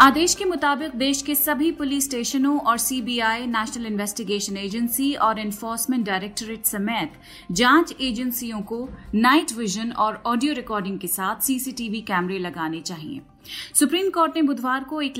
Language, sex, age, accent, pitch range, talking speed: Hindi, female, 30-49, native, 210-275 Hz, 145 wpm